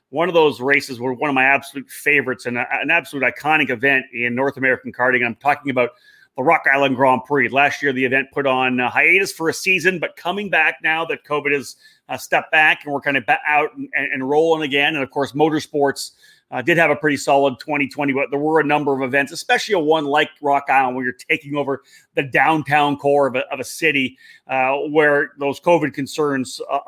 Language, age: English, 30-49